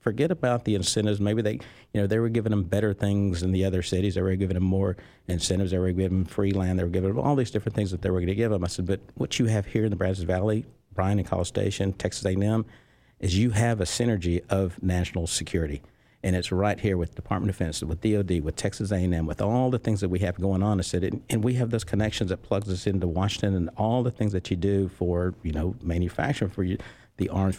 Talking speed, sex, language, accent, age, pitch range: 260 wpm, male, English, American, 50-69, 90-110 Hz